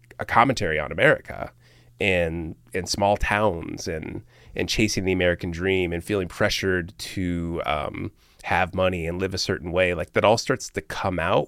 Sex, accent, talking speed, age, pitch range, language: male, American, 180 wpm, 30-49, 90-110 Hz, English